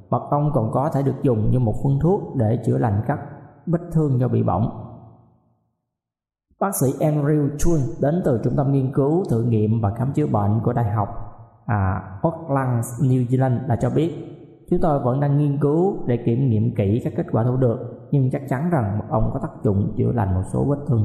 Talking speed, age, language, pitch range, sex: 215 wpm, 20-39, Vietnamese, 115-150 Hz, male